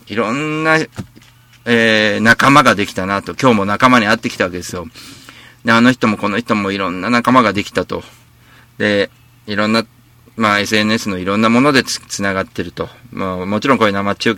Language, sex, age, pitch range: Japanese, male, 40-59, 95-120 Hz